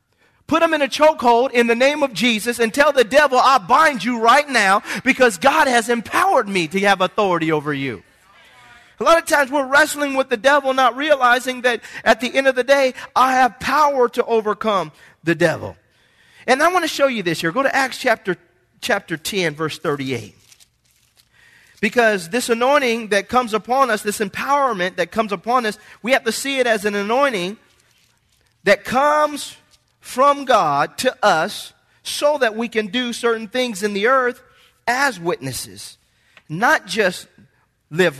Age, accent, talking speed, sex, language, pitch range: 40-59, American, 175 wpm, male, English, 175-260 Hz